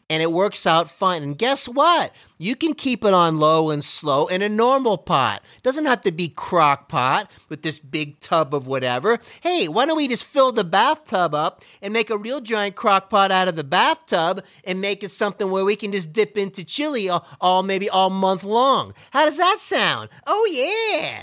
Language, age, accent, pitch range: English, 40-59, American, 160-225 Hz